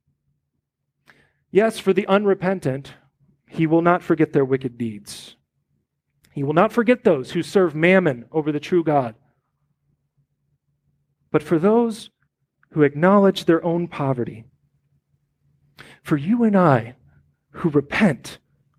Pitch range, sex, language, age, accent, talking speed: 145-225 Hz, male, English, 40-59, American, 120 wpm